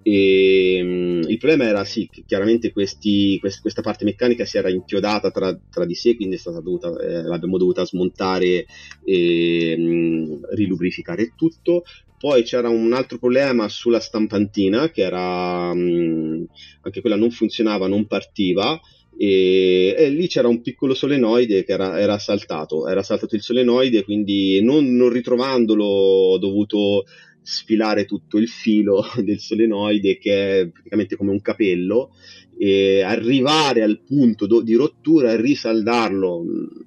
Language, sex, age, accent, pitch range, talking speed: Italian, male, 30-49, native, 95-115 Hz, 140 wpm